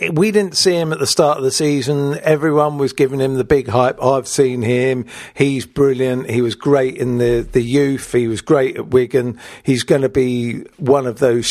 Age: 50-69